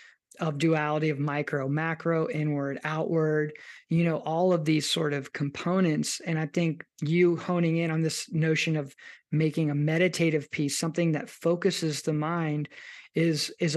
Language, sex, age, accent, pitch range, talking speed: English, male, 20-39, American, 155-175 Hz, 155 wpm